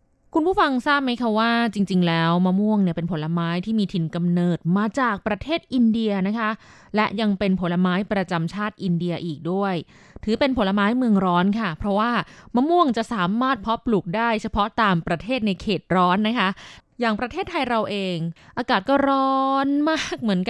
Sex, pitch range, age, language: female, 175-240 Hz, 20-39, Thai